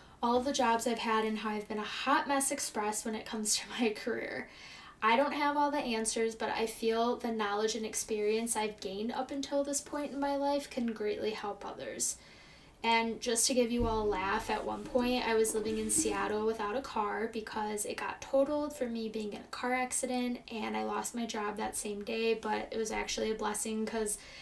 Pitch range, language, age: 215-250 Hz, English, 10-29